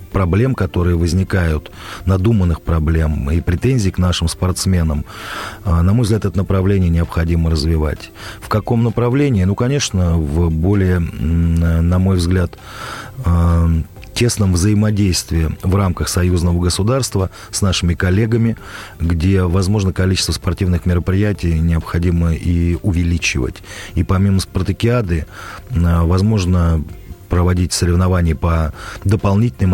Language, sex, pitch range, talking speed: Russian, male, 85-100 Hz, 105 wpm